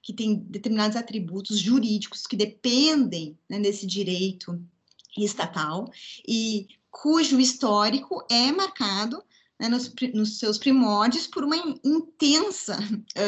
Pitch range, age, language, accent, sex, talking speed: 210-260 Hz, 20-39, Portuguese, Brazilian, female, 110 wpm